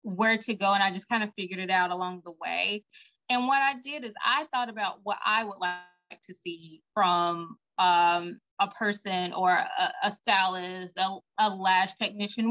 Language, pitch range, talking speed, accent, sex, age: English, 180-235 Hz, 190 wpm, American, female, 20-39